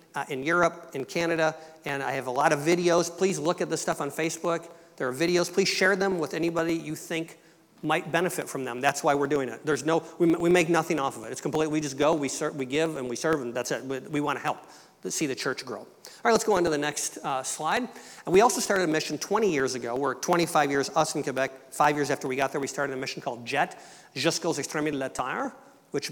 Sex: male